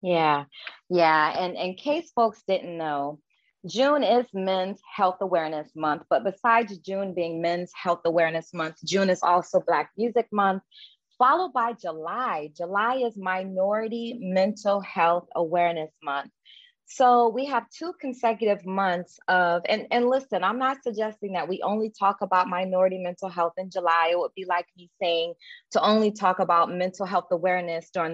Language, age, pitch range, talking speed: English, 20-39, 170-220 Hz, 160 wpm